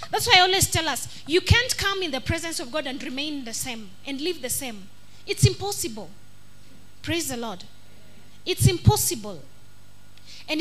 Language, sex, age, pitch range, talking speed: English, female, 20-39, 245-360 Hz, 170 wpm